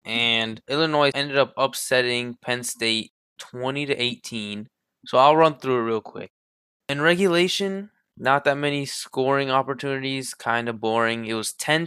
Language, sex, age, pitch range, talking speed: English, male, 20-39, 115-150 Hz, 150 wpm